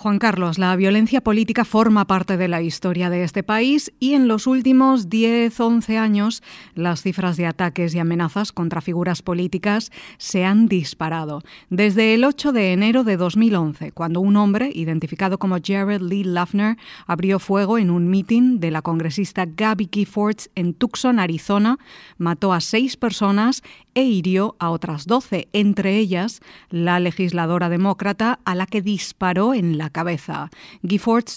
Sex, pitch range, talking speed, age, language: female, 180-220 Hz, 155 wpm, 30-49, Spanish